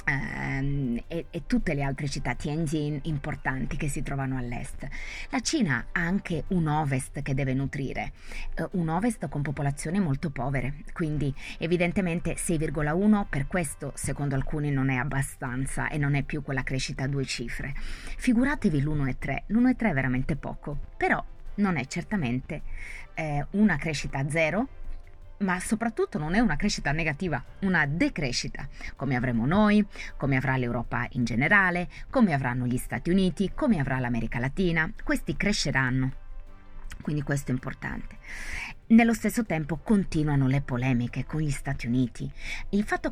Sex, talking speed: female, 145 wpm